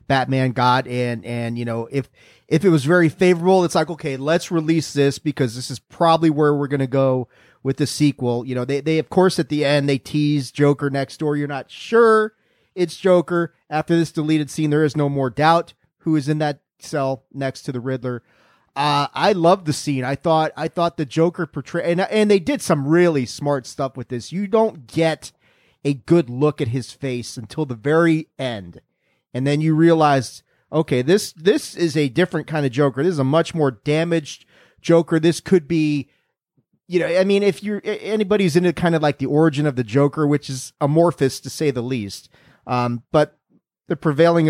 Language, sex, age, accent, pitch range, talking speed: English, male, 30-49, American, 135-170 Hz, 205 wpm